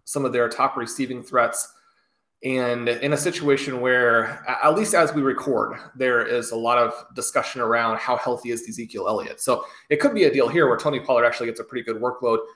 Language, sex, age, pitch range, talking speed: English, male, 30-49, 120-150 Hz, 210 wpm